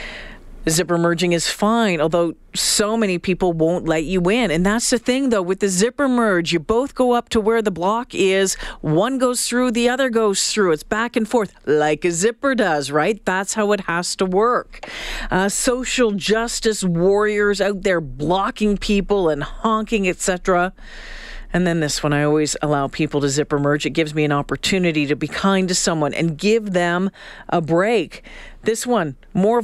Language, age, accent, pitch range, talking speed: English, 40-59, American, 180-235 Hz, 185 wpm